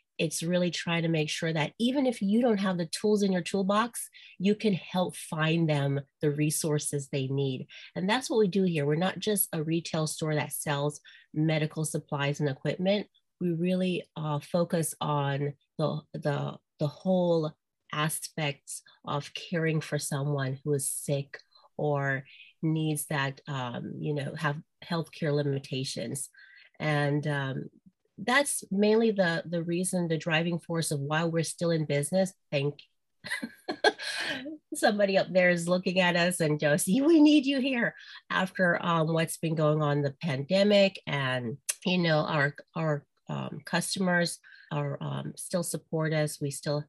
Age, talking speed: 30-49, 155 wpm